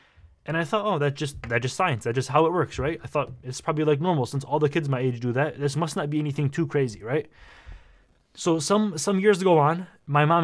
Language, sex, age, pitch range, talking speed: English, male, 20-39, 135-165 Hz, 260 wpm